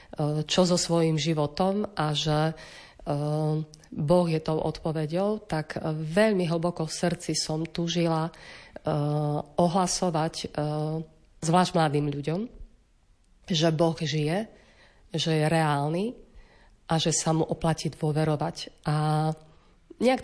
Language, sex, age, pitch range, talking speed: Slovak, female, 30-49, 155-175 Hz, 105 wpm